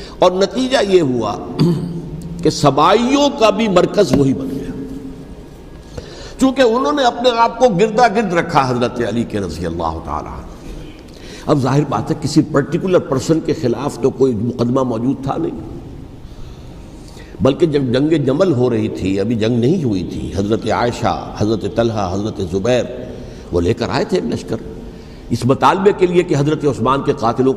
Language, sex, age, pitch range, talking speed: Urdu, male, 60-79, 105-155 Hz, 165 wpm